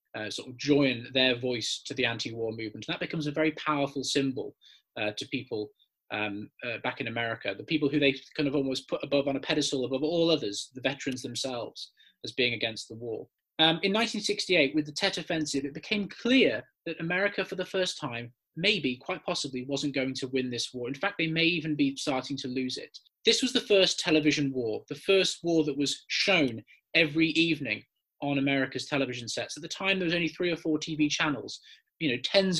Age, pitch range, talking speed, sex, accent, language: 20-39, 135-165 Hz, 210 wpm, male, British, English